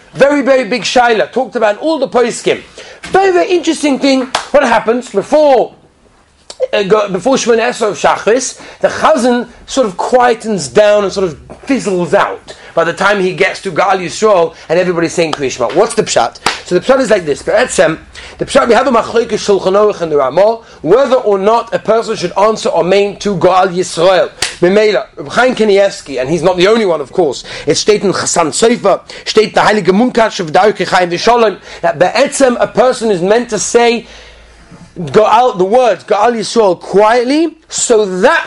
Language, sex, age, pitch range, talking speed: English, male, 30-49, 190-250 Hz, 155 wpm